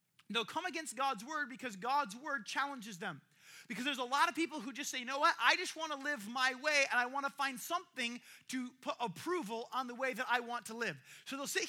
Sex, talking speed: male, 250 wpm